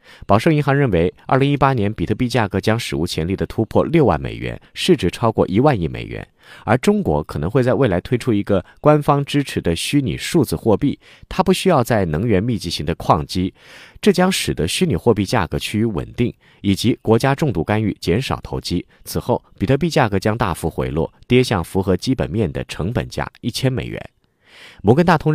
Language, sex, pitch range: Chinese, male, 90-130 Hz